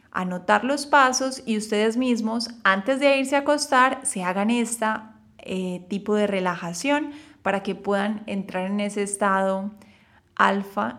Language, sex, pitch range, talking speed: Spanish, female, 185-225 Hz, 135 wpm